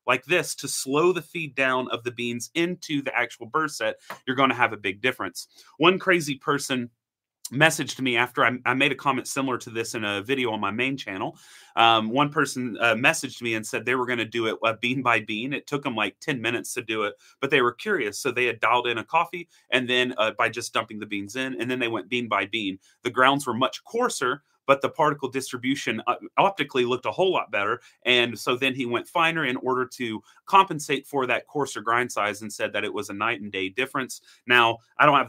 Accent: American